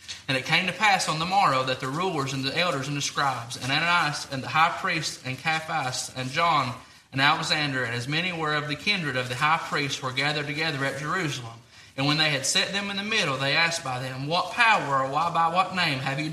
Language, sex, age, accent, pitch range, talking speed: English, male, 30-49, American, 135-175 Hz, 245 wpm